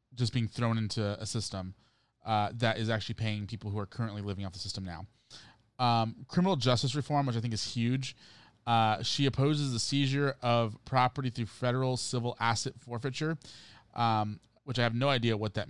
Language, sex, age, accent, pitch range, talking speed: English, male, 30-49, American, 110-125 Hz, 185 wpm